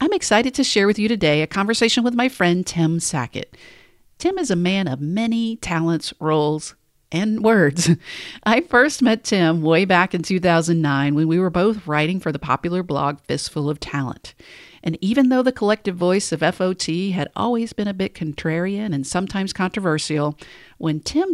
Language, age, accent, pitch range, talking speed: English, 50-69, American, 150-200 Hz, 175 wpm